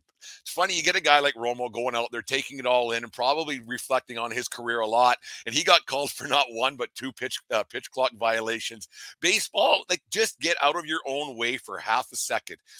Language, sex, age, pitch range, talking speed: English, male, 50-69, 115-135 Hz, 235 wpm